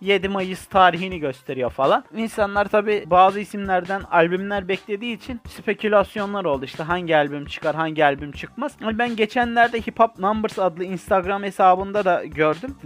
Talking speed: 145 wpm